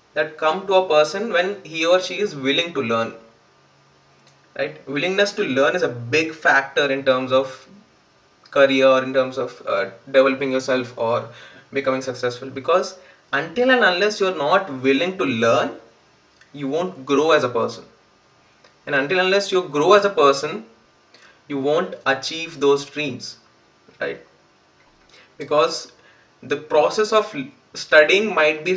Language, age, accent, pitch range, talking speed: Hindi, 20-39, native, 135-185 Hz, 150 wpm